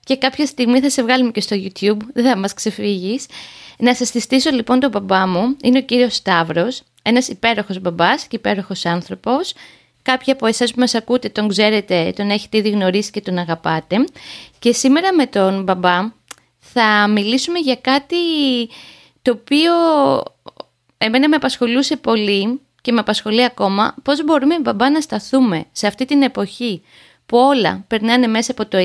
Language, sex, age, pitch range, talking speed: Greek, female, 20-39, 195-260 Hz, 165 wpm